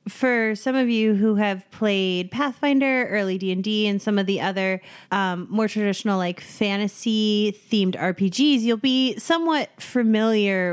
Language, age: English, 30-49